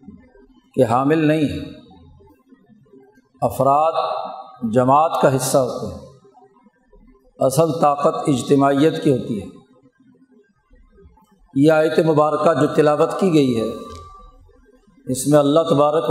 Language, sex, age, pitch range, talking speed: Urdu, male, 50-69, 135-160 Hz, 100 wpm